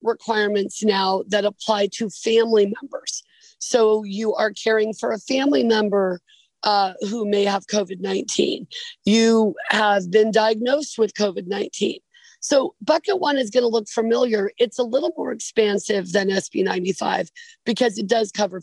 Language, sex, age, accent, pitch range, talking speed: English, female, 40-59, American, 205-255 Hz, 145 wpm